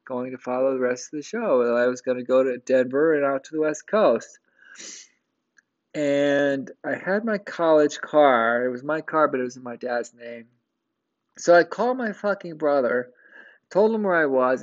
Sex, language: male, English